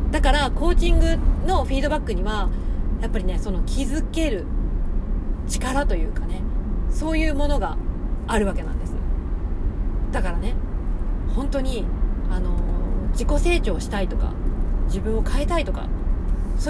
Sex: female